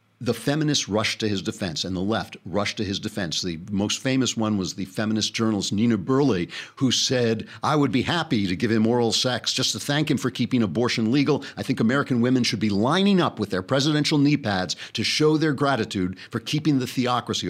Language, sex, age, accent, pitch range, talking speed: English, male, 50-69, American, 105-140 Hz, 215 wpm